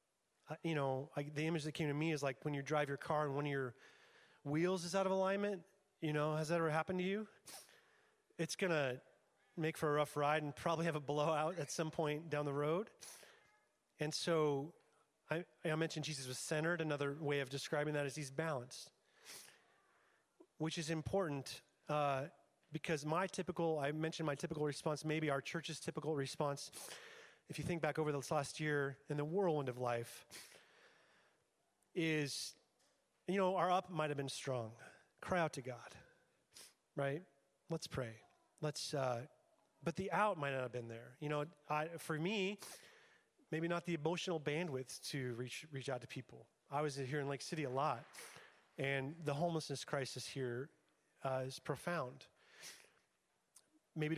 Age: 30-49